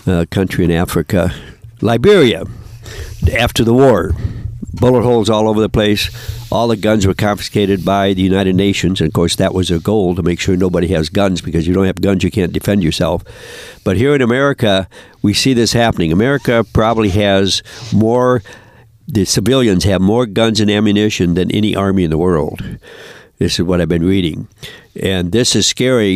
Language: English